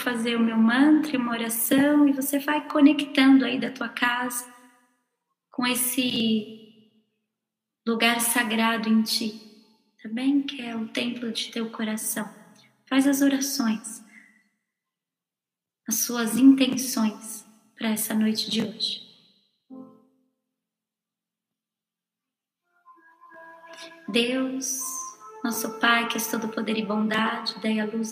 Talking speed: 110 wpm